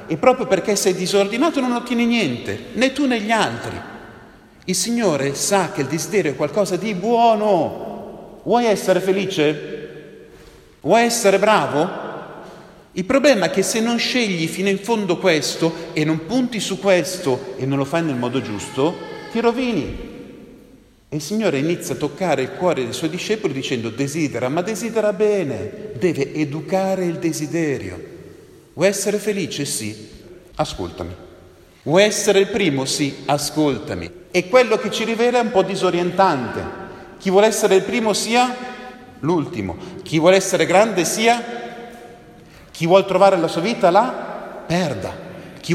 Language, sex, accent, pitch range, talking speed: Italian, male, native, 145-215 Hz, 150 wpm